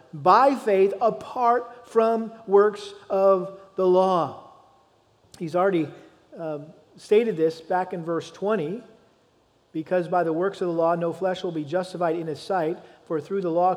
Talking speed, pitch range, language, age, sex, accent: 155 wpm, 175-215 Hz, English, 40-59, male, American